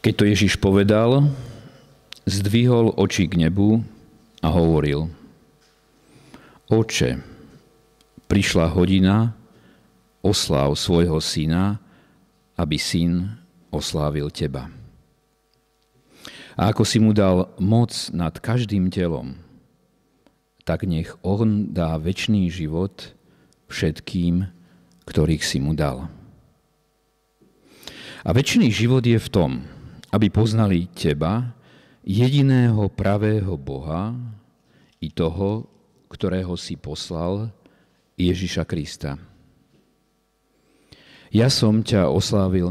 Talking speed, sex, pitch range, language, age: 90 wpm, male, 80-105 Hz, Slovak, 50-69